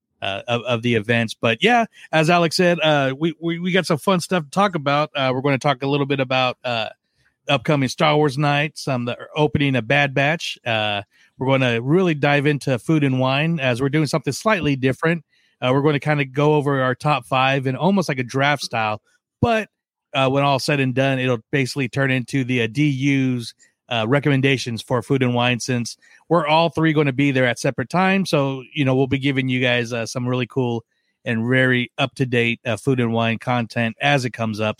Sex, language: male, English